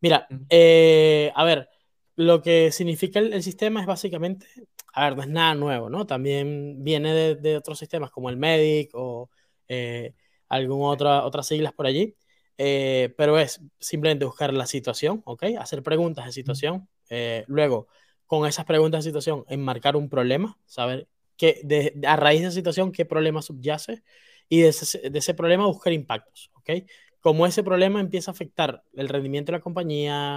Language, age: Spanish, 20-39